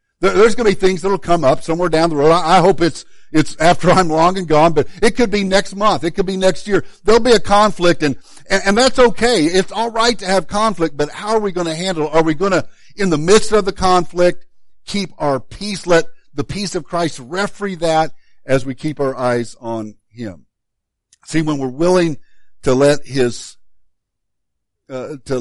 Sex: male